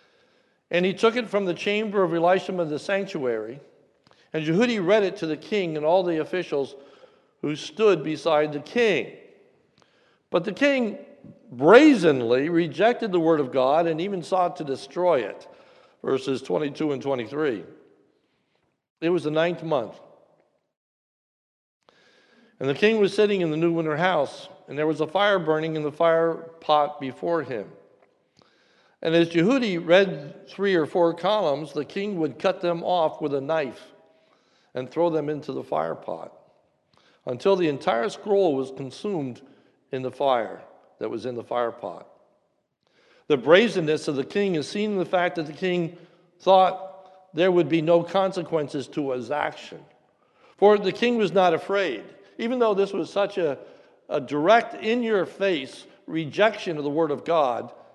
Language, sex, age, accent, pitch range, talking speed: English, male, 60-79, American, 155-205 Hz, 165 wpm